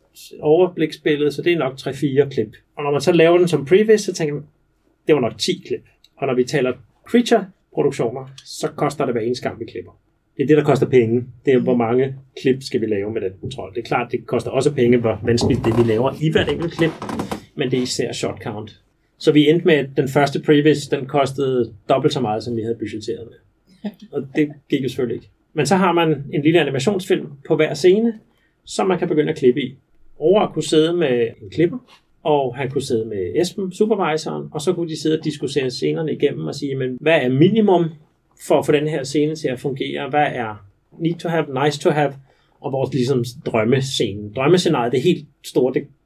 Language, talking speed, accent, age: Danish, 225 wpm, native, 30-49